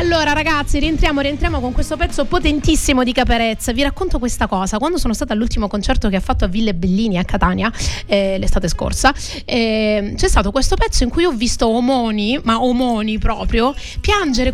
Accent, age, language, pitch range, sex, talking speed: native, 30-49, Italian, 215-270 Hz, female, 180 wpm